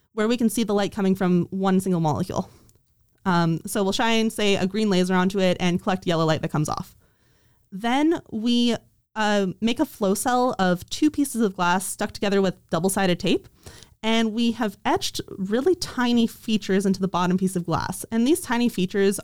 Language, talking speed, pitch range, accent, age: English, 195 wpm, 185-225 Hz, American, 20-39